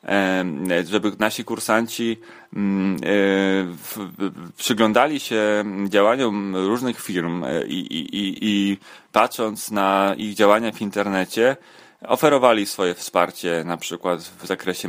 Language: Polish